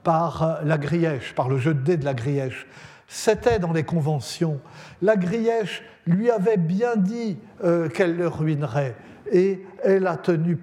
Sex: male